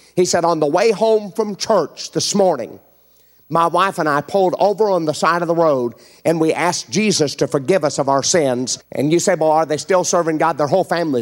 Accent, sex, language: American, male, English